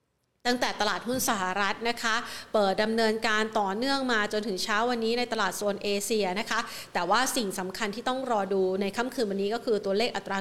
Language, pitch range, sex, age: Thai, 200-235 Hz, female, 30-49